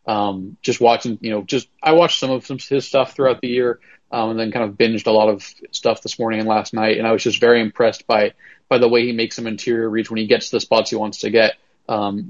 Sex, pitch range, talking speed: male, 110-135 Hz, 275 wpm